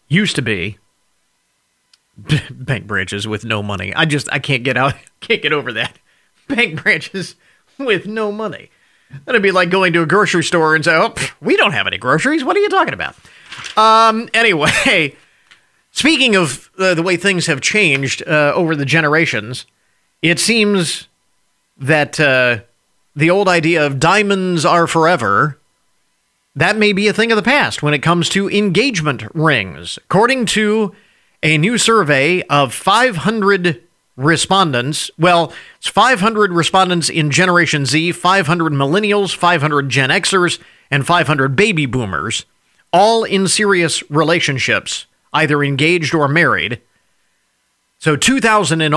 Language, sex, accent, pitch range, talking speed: English, male, American, 140-195 Hz, 145 wpm